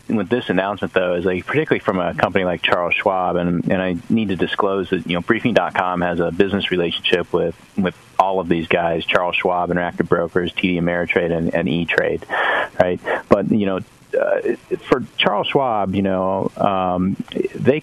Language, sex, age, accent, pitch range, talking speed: English, male, 30-49, American, 90-100 Hz, 180 wpm